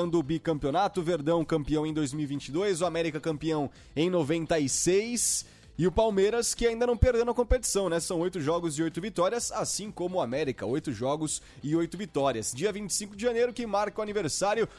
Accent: Brazilian